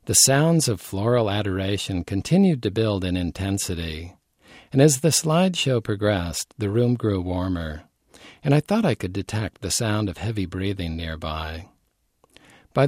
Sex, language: male, English